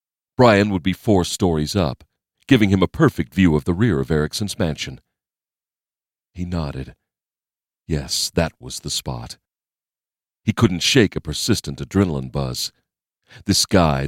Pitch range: 75-100 Hz